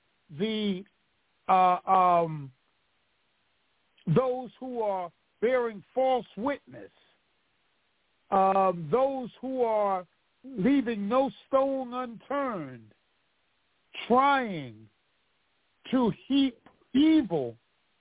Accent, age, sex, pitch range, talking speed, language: American, 50-69, male, 190-245 Hz, 70 wpm, English